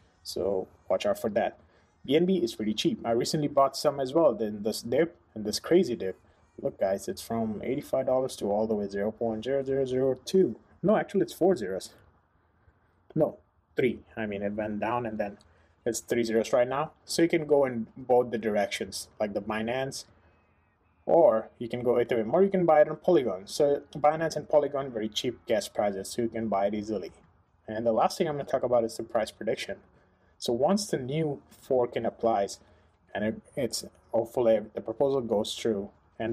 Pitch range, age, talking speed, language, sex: 100-130 Hz, 20-39, 190 wpm, English, male